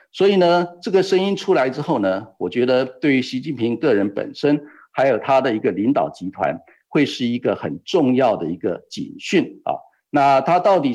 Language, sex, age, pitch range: Chinese, male, 50-69, 130-195 Hz